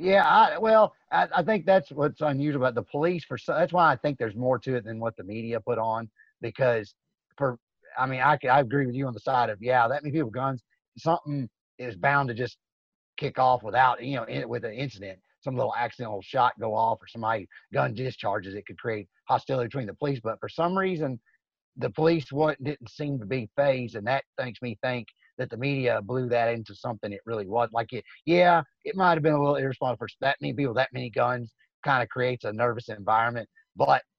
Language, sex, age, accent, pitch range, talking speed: English, male, 30-49, American, 115-145 Hz, 225 wpm